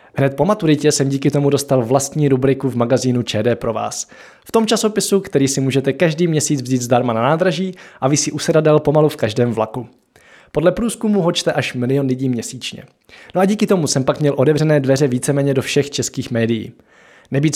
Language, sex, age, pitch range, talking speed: Czech, male, 20-39, 130-165 Hz, 190 wpm